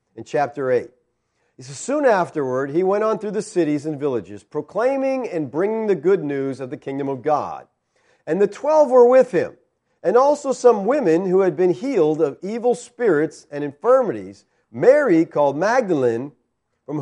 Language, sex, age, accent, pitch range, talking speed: English, male, 40-59, American, 140-235 Hz, 165 wpm